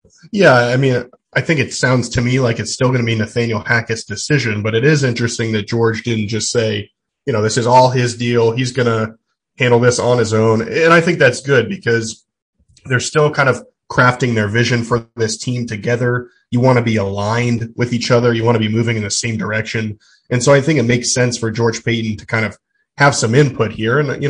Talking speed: 235 wpm